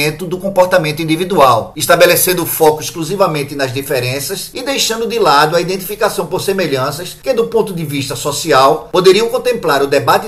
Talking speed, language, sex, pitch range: 160 wpm, Portuguese, male, 145-200 Hz